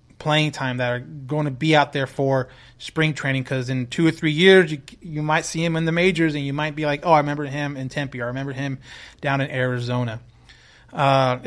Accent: American